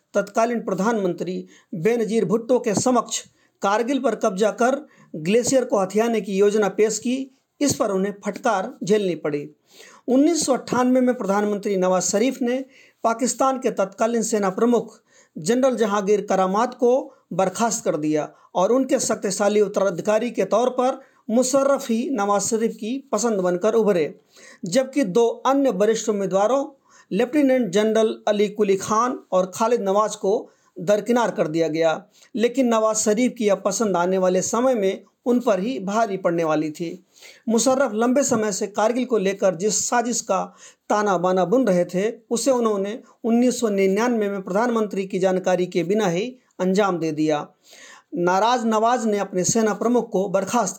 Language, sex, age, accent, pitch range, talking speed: English, male, 40-59, Indian, 195-240 Hz, 150 wpm